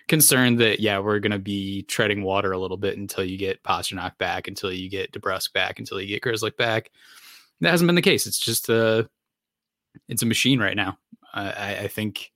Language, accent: English, American